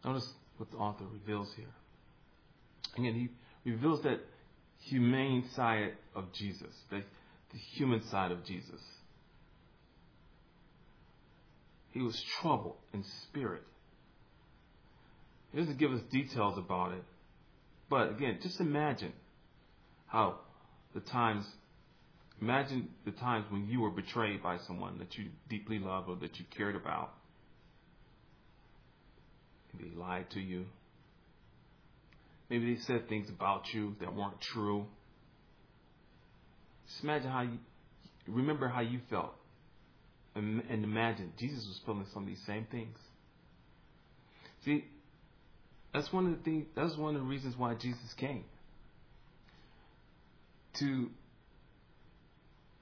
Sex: male